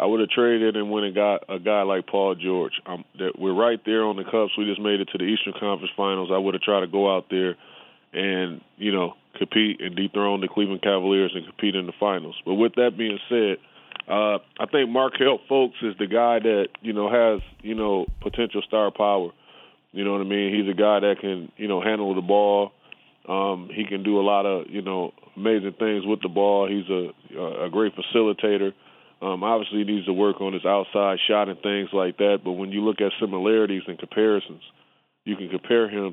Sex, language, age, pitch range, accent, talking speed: male, English, 20-39, 95-105 Hz, American, 225 wpm